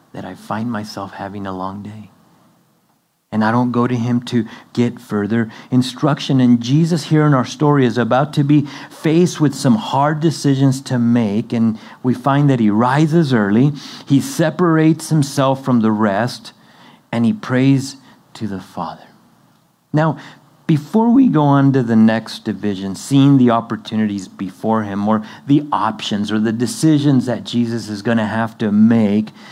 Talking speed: 165 wpm